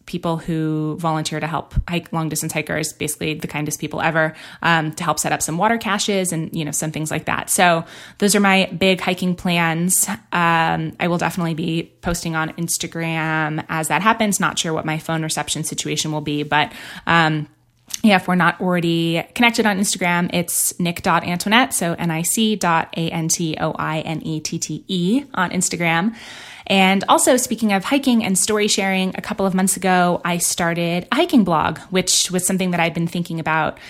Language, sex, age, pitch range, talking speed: English, female, 20-39, 160-190 Hz, 205 wpm